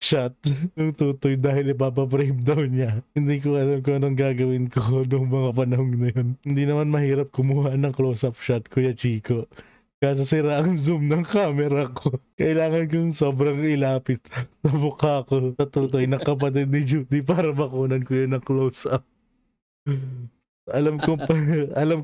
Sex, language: male, Filipino